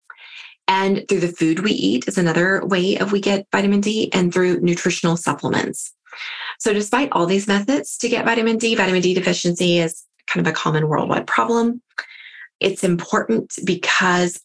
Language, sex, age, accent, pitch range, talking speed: English, female, 20-39, American, 170-205 Hz, 165 wpm